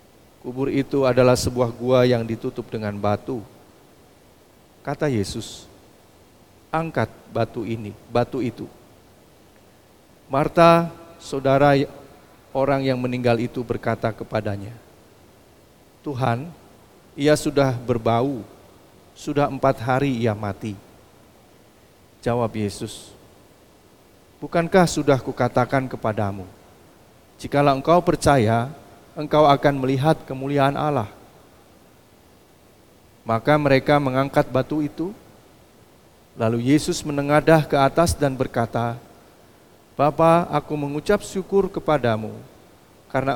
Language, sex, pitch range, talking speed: Indonesian, male, 115-150 Hz, 90 wpm